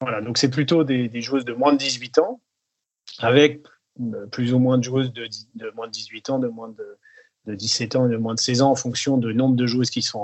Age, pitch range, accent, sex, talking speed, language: 30-49, 120-155 Hz, French, male, 260 wpm, French